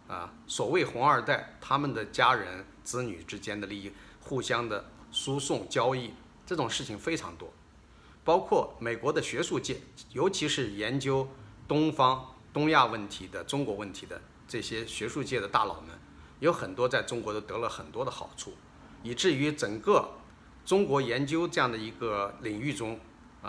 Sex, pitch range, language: male, 100-135 Hz, Chinese